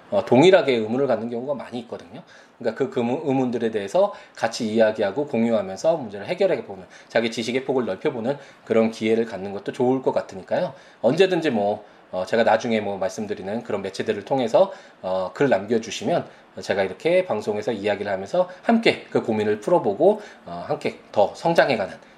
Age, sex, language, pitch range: 20-39, male, Korean, 100-145 Hz